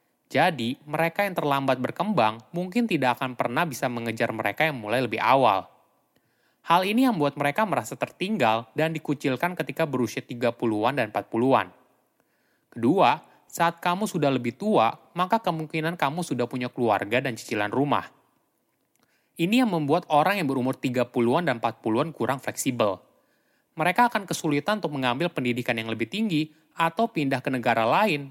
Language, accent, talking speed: Indonesian, native, 150 wpm